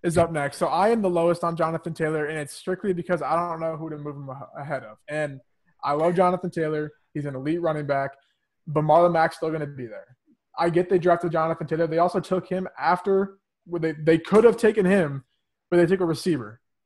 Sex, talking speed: male, 230 wpm